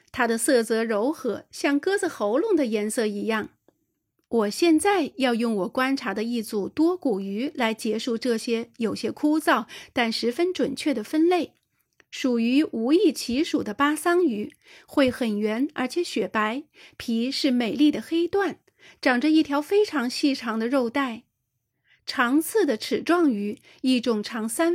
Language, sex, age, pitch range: Chinese, female, 30-49, 225-310 Hz